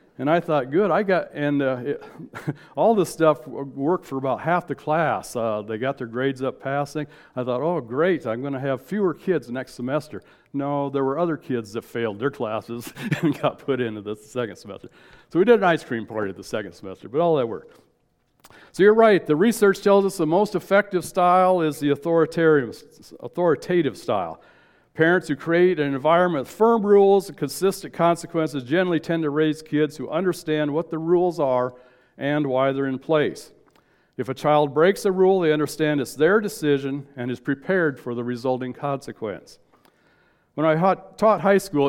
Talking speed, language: 190 wpm, English